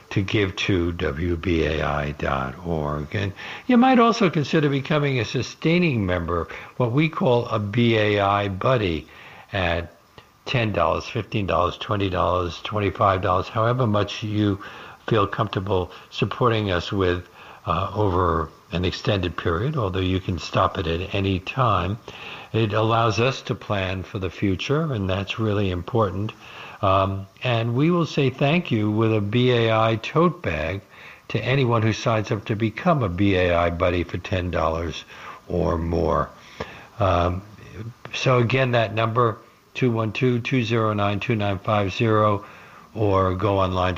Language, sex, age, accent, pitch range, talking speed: English, male, 60-79, American, 90-115 Hz, 125 wpm